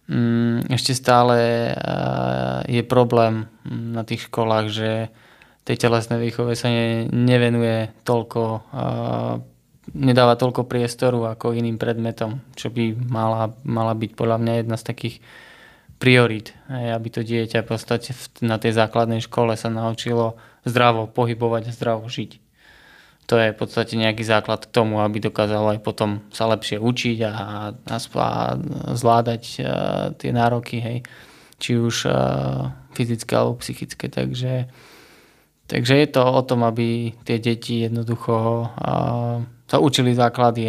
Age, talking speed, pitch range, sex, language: 20-39, 125 wpm, 110-120 Hz, male, Slovak